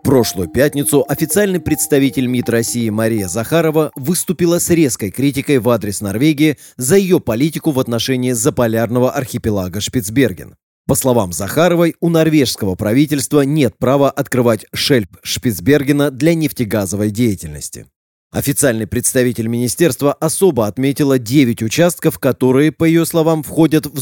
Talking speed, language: 125 wpm, Russian